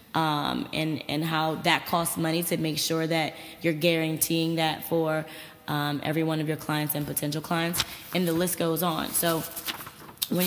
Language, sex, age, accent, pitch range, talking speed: English, female, 20-39, American, 155-185 Hz, 180 wpm